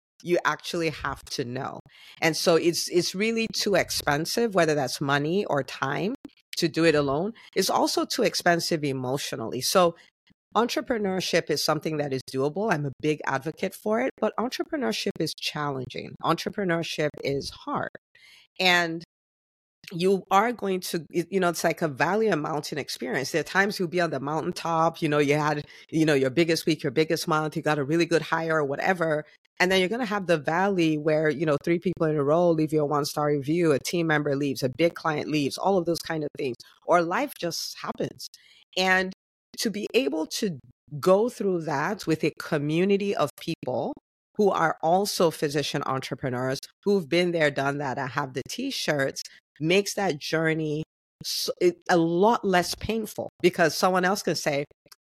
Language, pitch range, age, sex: English, 150-190 Hz, 50-69, female